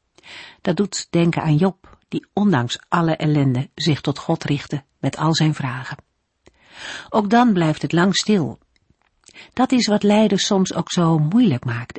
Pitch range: 150-210 Hz